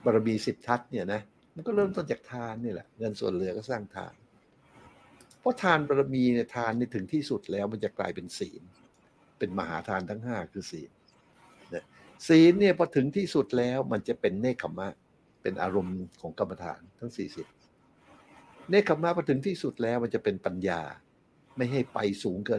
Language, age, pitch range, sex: English, 60-79, 100-130 Hz, male